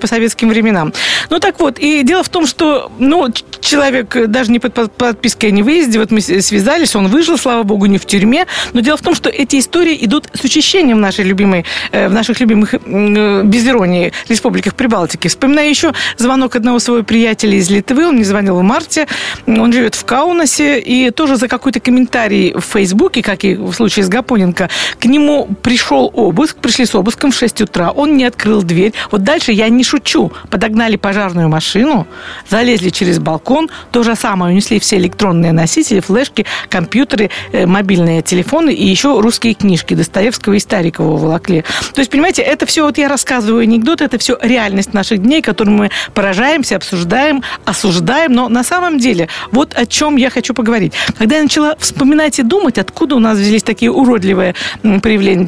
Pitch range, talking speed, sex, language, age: 200-275 Hz, 180 wpm, female, Russian, 50-69